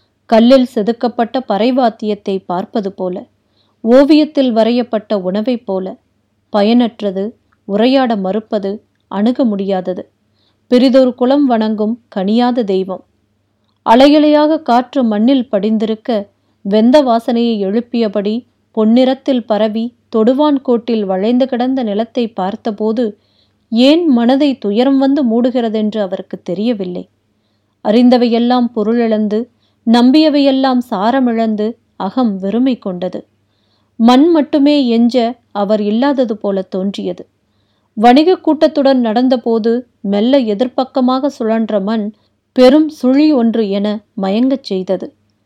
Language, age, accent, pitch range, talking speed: Tamil, 30-49, native, 200-250 Hz, 90 wpm